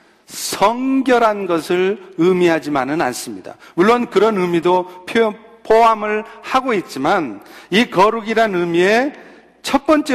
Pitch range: 180-230 Hz